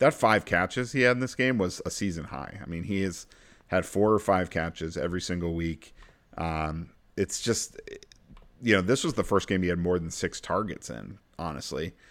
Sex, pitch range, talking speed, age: male, 85-105 Hz, 210 wpm, 40-59